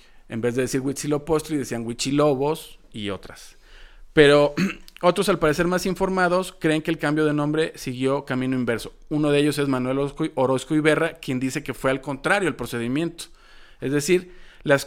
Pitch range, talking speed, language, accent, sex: 125-155 Hz, 170 wpm, Spanish, Mexican, male